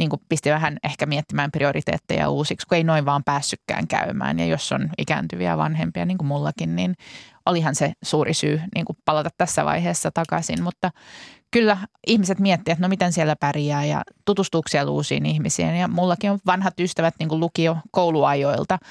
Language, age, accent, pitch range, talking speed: Finnish, 20-39, native, 150-180 Hz, 170 wpm